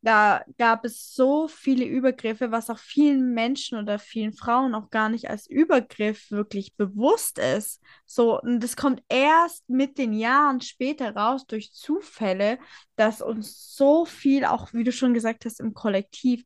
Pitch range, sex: 210-250 Hz, female